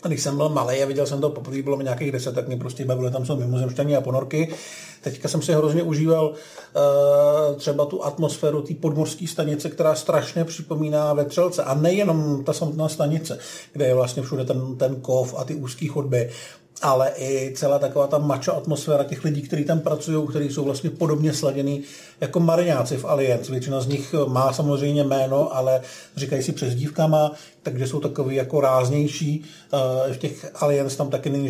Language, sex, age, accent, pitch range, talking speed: Czech, male, 50-69, native, 135-155 Hz, 185 wpm